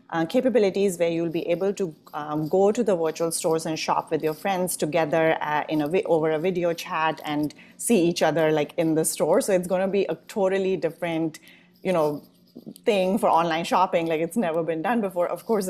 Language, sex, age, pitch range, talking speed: English, female, 30-49, 155-180 Hz, 220 wpm